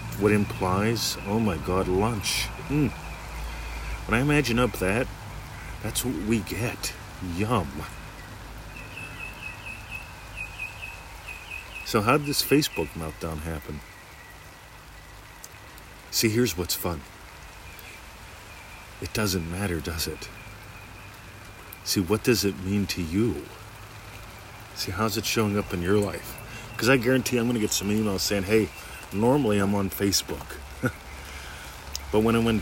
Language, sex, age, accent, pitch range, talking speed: English, male, 50-69, American, 85-110 Hz, 125 wpm